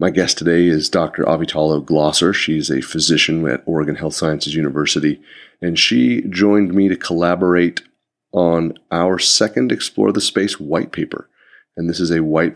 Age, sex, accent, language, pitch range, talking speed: 30-49, male, American, English, 80-95 Hz, 160 wpm